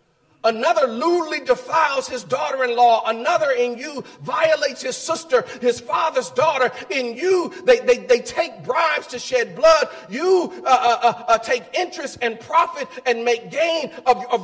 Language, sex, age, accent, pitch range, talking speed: English, male, 40-59, American, 245-325 Hz, 155 wpm